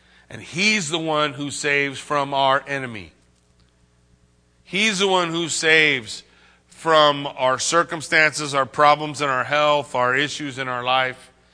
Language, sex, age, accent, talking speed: English, male, 40-59, American, 140 wpm